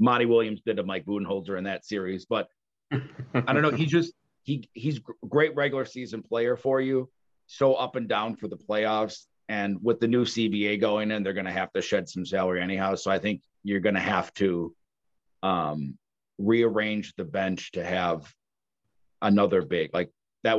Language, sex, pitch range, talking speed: English, male, 95-115 Hz, 185 wpm